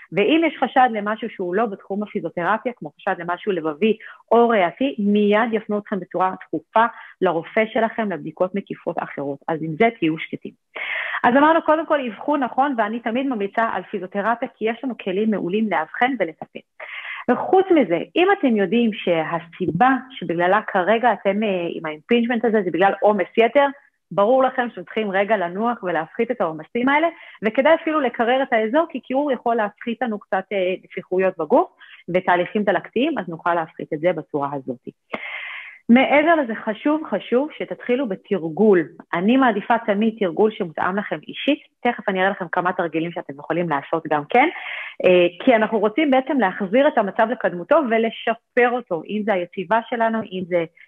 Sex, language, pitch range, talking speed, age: female, English, 180-245 Hz, 135 wpm, 40-59